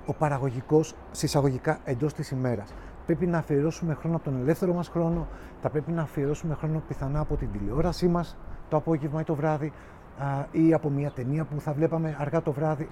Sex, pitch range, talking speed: male, 135-170 Hz, 185 wpm